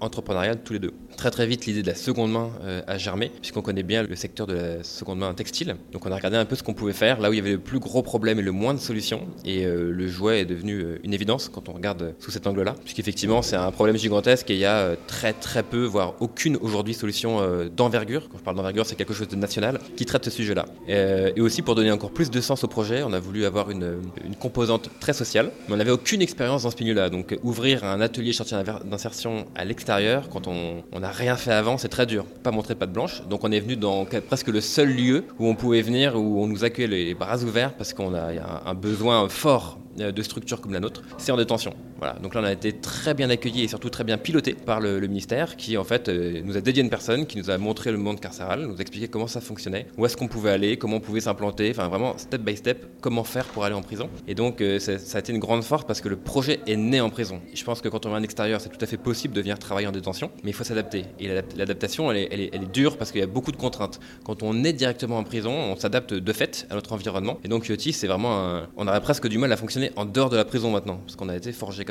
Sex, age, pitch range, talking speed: male, 20-39, 100-120 Hz, 285 wpm